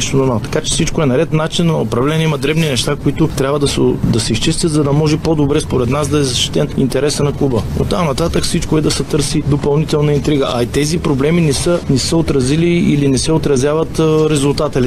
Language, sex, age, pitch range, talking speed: Bulgarian, male, 30-49, 130-155 Hz, 220 wpm